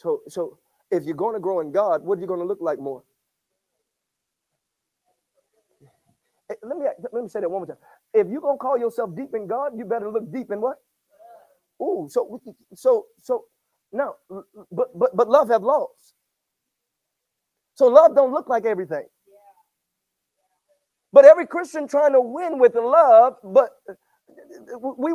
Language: English